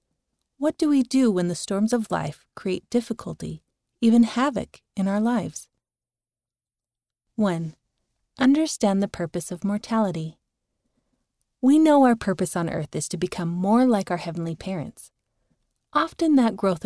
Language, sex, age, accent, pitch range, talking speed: English, female, 30-49, American, 180-235 Hz, 140 wpm